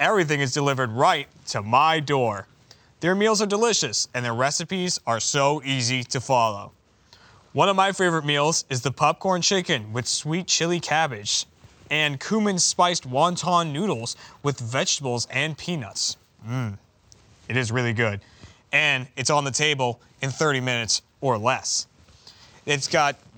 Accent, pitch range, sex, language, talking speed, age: American, 125-170 Hz, male, English, 150 wpm, 20-39